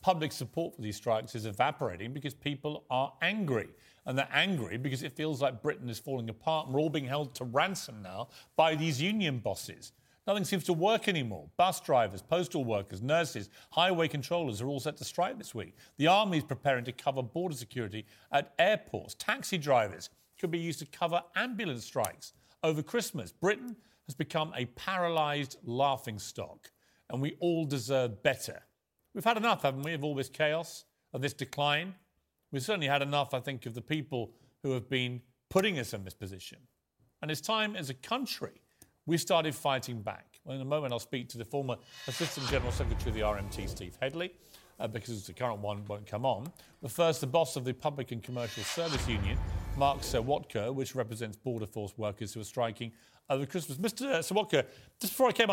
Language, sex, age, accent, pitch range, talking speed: English, male, 40-59, British, 120-165 Hz, 190 wpm